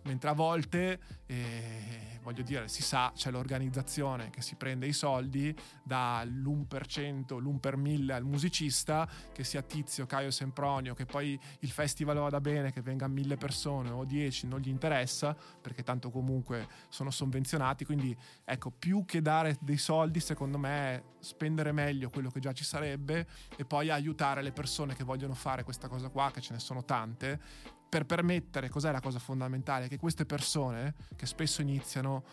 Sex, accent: male, native